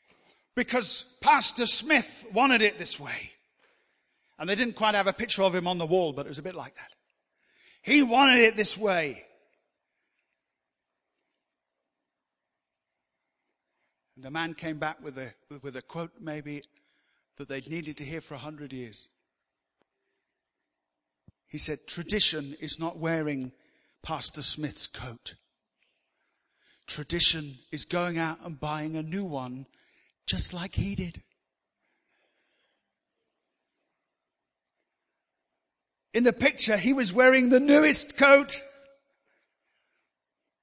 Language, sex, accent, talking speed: English, male, British, 125 wpm